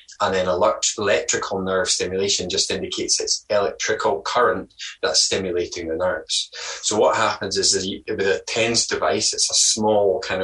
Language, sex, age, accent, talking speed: English, male, 20-39, British, 165 wpm